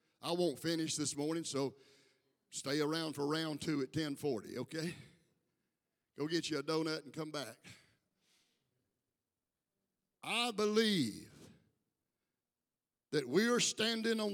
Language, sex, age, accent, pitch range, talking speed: English, male, 60-79, American, 150-185 Hz, 120 wpm